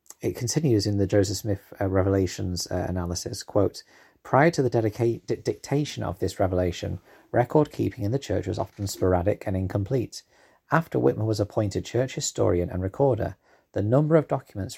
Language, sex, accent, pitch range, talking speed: English, male, British, 95-115 Hz, 165 wpm